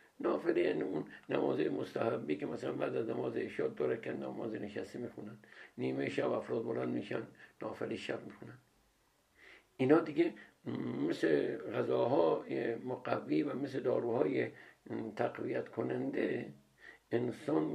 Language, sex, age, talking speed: Persian, male, 60-79, 120 wpm